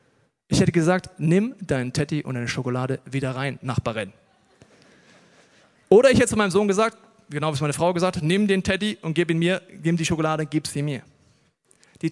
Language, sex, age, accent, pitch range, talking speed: German, male, 40-59, German, 145-190 Hz, 200 wpm